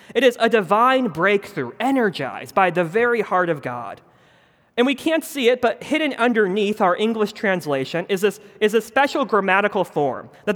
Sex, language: male, English